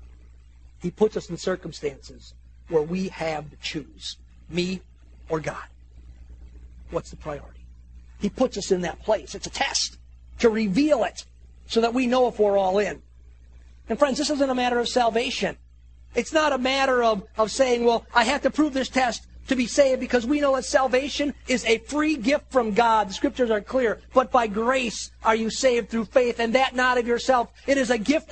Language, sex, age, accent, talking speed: English, male, 40-59, American, 195 wpm